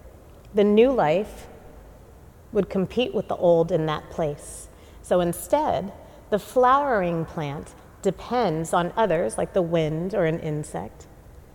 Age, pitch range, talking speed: 40-59, 140-220 Hz, 130 wpm